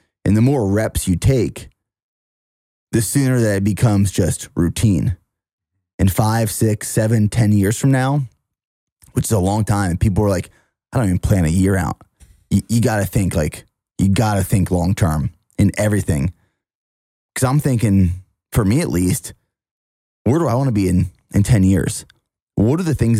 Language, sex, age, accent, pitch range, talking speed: English, male, 20-39, American, 95-115 Hz, 185 wpm